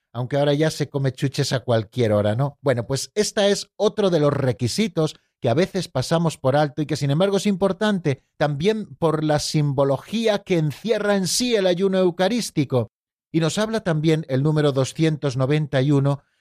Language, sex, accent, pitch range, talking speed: Spanish, male, Spanish, 125-160 Hz, 175 wpm